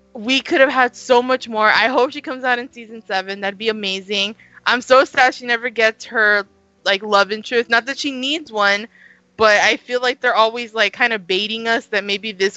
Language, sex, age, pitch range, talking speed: English, female, 20-39, 195-240 Hz, 230 wpm